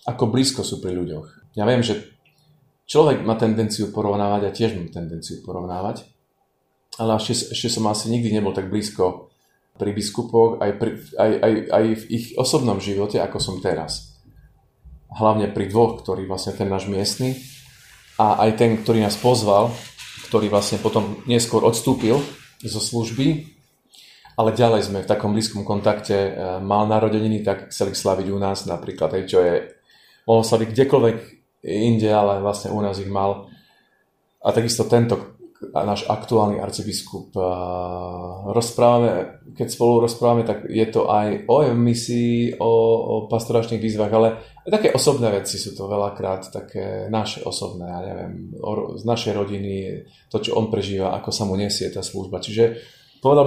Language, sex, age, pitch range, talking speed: Slovak, male, 30-49, 100-120 Hz, 155 wpm